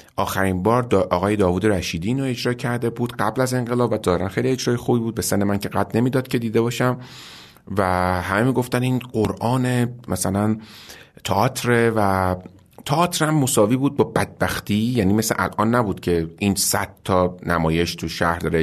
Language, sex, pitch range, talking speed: Persian, male, 90-120 Hz, 170 wpm